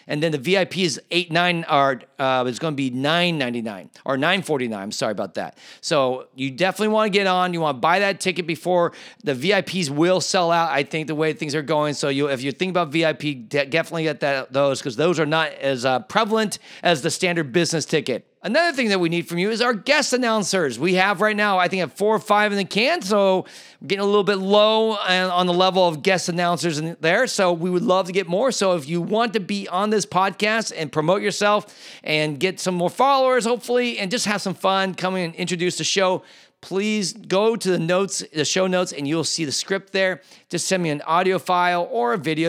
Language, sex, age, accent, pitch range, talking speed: English, male, 40-59, American, 160-205 Hz, 240 wpm